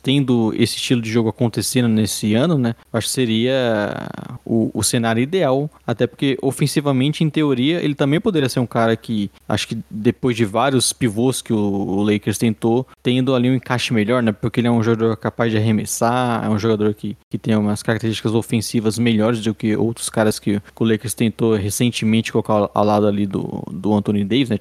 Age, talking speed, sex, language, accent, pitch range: 20-39, 200 wpm, male, Portuguese, Brazilian, 105-125 Hz